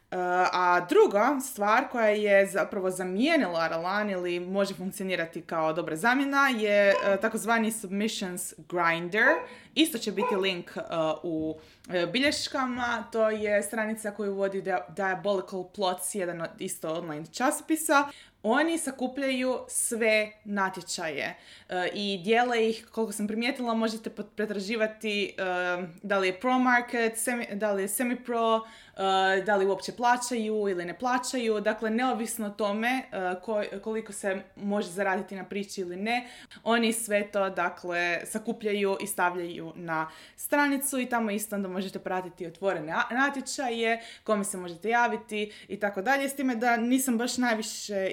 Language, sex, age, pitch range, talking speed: Croatian, female, 20-39, 190-235 Hz, 140 wpm